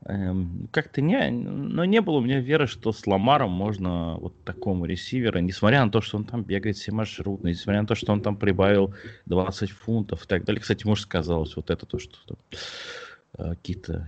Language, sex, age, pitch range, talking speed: Russian, male, 20-39, 90-125 Hz, 185 wpm